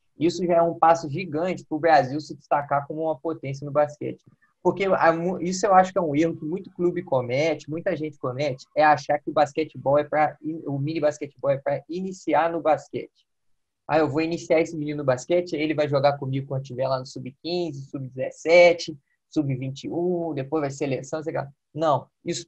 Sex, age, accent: male, 20-39, Brazilian